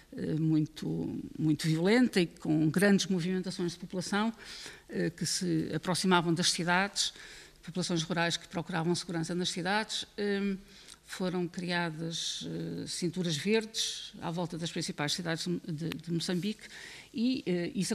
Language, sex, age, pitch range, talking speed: Portuguese, female, 50-69, 170-210 Hz, 115 wpm